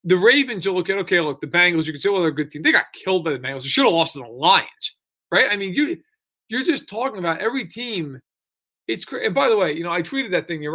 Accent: American